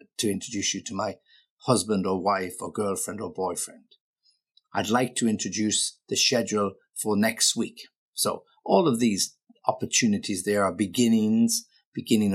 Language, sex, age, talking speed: English, male, 50-69, 145 wpm